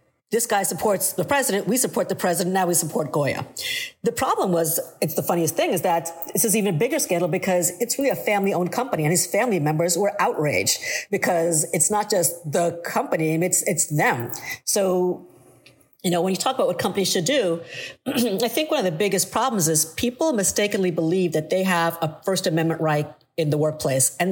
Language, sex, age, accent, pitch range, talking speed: English, female, 50-69, American, 160-205 Hz, 200 wpm